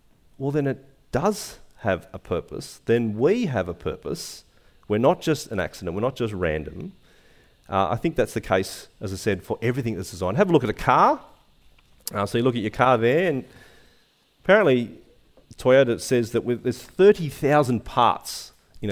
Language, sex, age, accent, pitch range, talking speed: English, male, 40-59, Australian, 115-165 Hz, 180 wpm